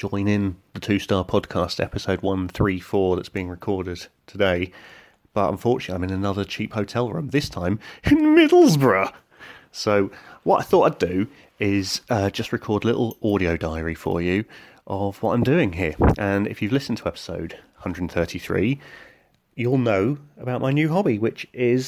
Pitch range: 95-130 Hz